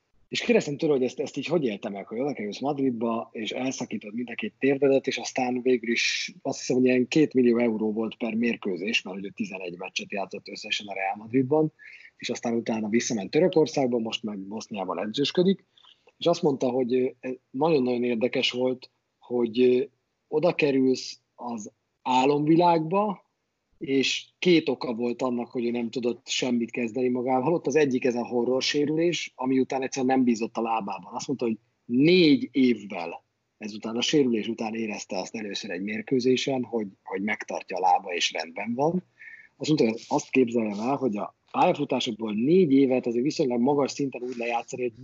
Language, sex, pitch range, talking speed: Hungarian, male, 115-145 Hz, 170 wpm